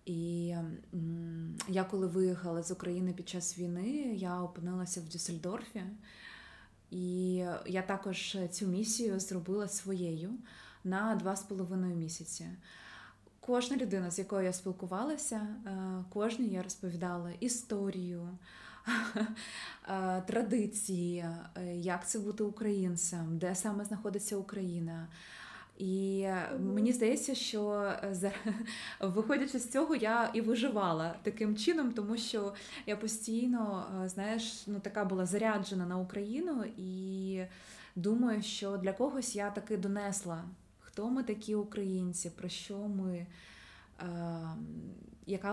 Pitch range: 180-215 Hz